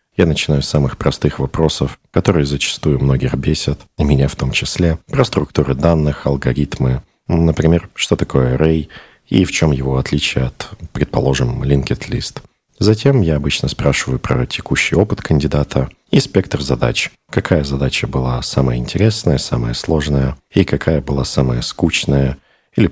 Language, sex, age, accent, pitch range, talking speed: Russian, male, 40-59, native, 70-85 Hz, 145 wpm